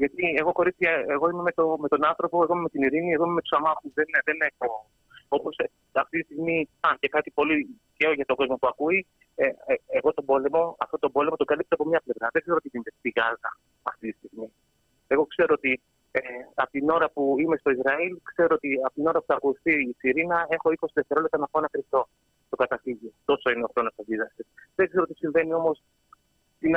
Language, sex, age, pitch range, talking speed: Greek, male, 30-49, 130-165 Hz, 205 wpm